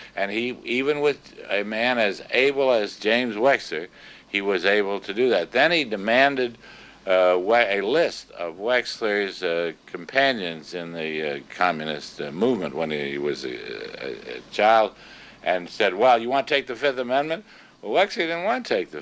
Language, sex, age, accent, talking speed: English, male, 60-79, American, 180 wpm